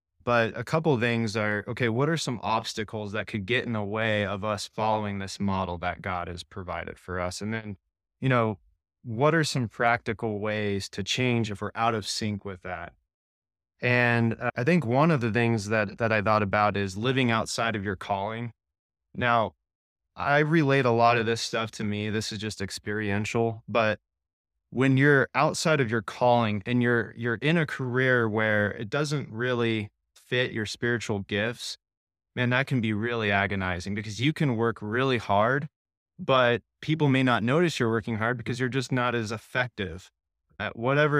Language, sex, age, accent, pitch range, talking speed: English, male, 20-39, American, 100-120 Hz, 185 wpm